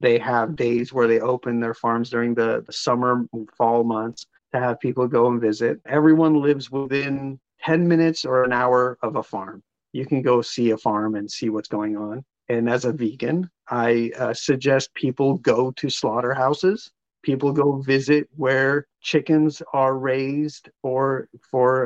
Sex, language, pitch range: male, English, 120-145 Hz